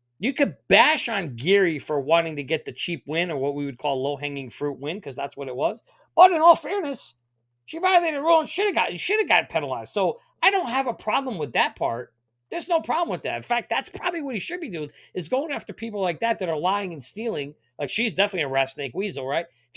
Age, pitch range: 40-59, 135-215 Hz